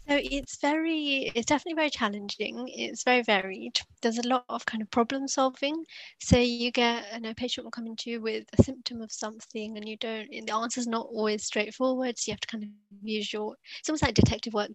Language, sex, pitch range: English, female, 210-245 Hz